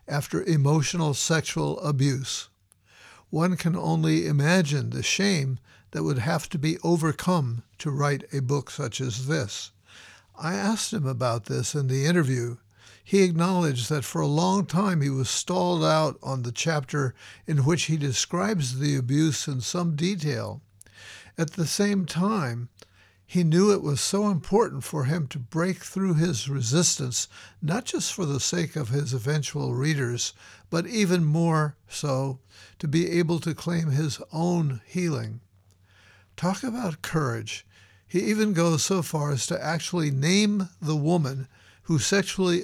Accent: American